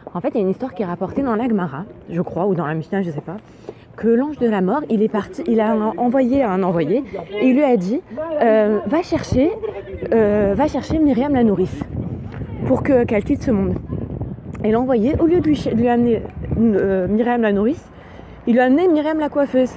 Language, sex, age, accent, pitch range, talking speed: French, female, 20-39, French, 205-275 Hz, 230 wpm